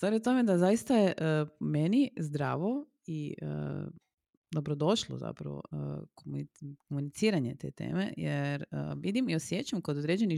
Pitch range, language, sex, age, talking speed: 140-200 Hz, Croatian, female, 30-49, 140 wpm